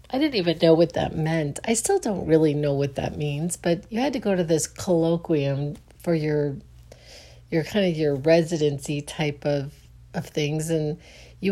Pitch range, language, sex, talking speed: 140-180 Hz, English, female, 190 wpm